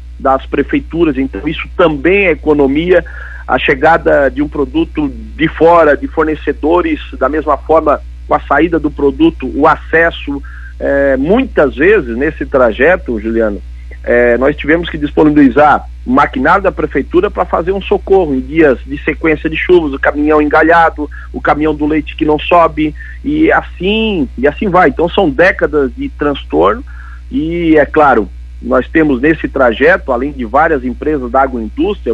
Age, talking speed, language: 40-59, 155 wpm, Portuguese